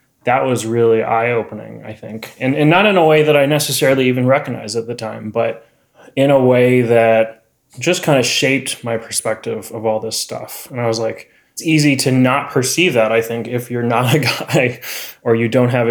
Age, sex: 20-39, male